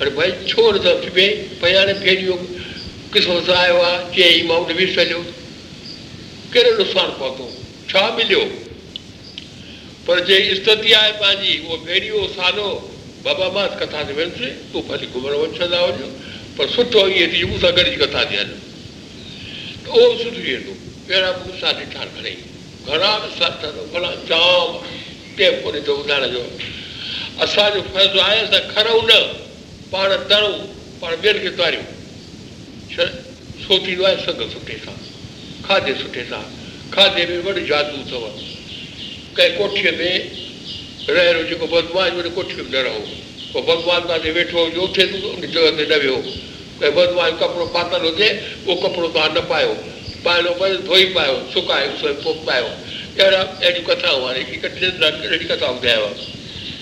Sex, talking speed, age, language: male, 65 wpm, 60-79, Hindi